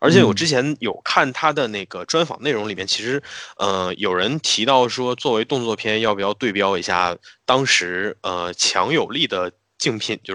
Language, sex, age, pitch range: Chinese, male, 20-39, 95-135 Hz